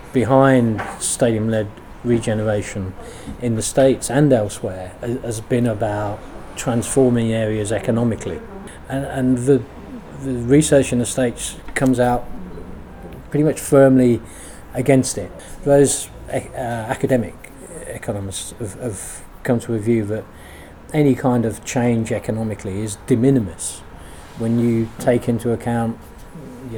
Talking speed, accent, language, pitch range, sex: 120 wpm, British, English, 105-130 Hz, male